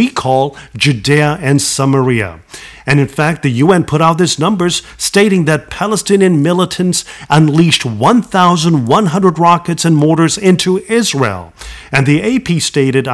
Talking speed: 130 wpm